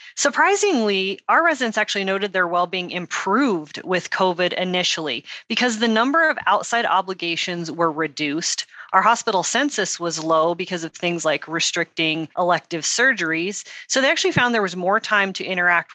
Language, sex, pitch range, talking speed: English, female, 170-220 Hz, 155 wpm